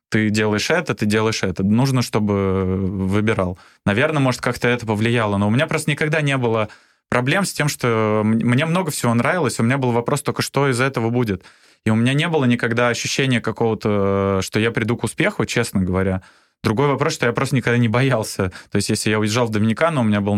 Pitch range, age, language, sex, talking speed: 105-125 Hz, 20-39, Russian, male, 210 wpm